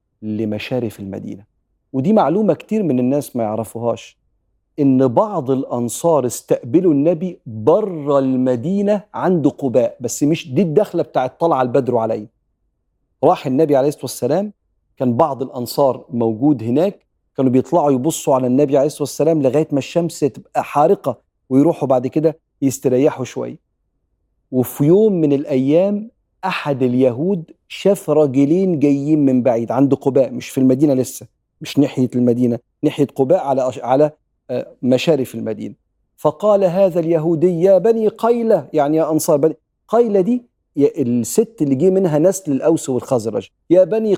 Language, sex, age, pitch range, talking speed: Arabic, male, 40-59, 120-165 Hz, 140 wpm